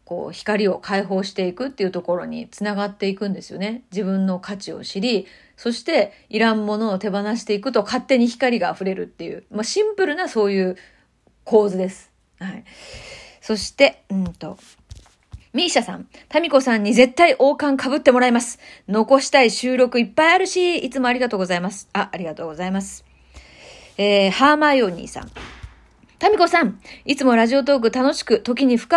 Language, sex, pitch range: Japanese, female, 200-275 Hz